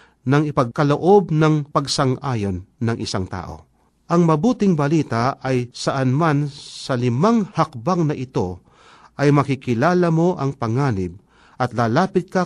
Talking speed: 125 wpm